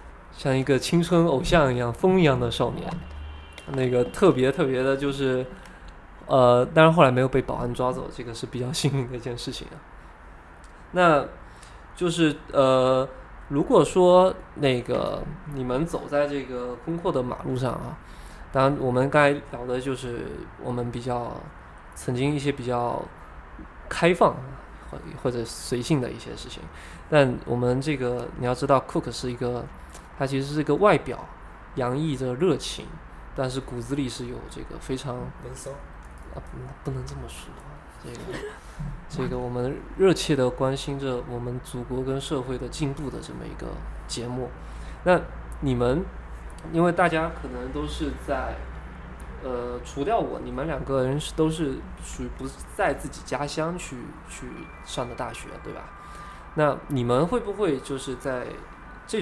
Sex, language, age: male, Chinese, 20-39